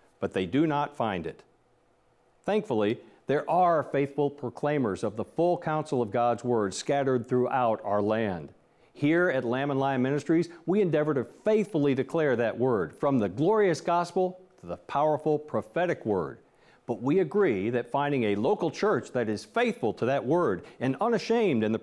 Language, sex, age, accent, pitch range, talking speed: English, male, 50-69, American, 120-175 Hz, 170 wpm